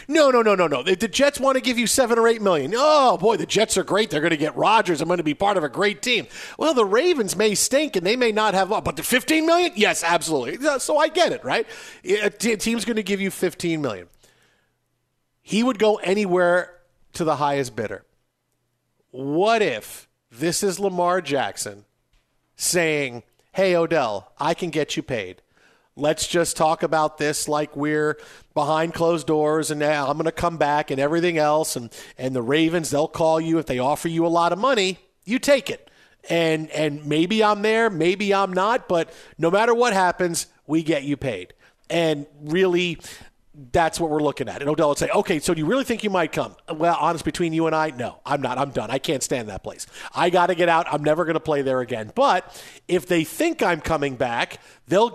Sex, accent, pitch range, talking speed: male, American, 155-215 Hz, 215 wpm